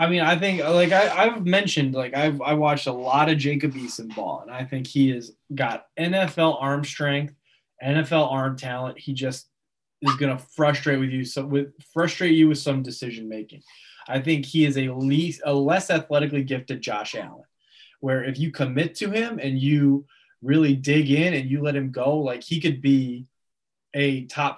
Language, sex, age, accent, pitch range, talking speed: English, male, 20-39, American, 130-150 Hz, 195 wpm